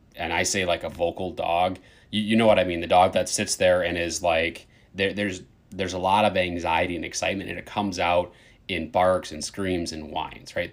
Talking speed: 230 wpm